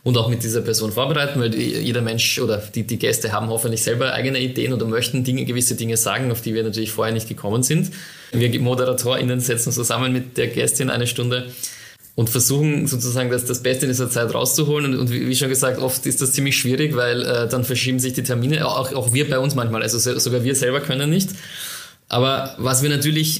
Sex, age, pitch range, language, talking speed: male, 20-39, 115-135 Hz, German, 215 wpm